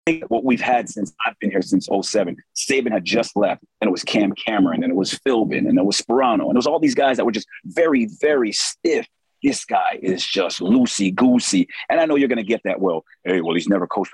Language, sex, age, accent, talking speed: English, male, 40-59, American, 245 wpm